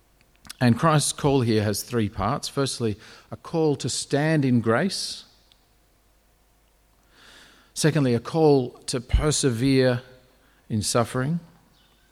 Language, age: English, 50-69